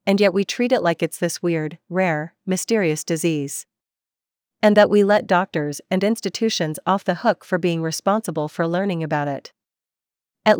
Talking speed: 170 wpm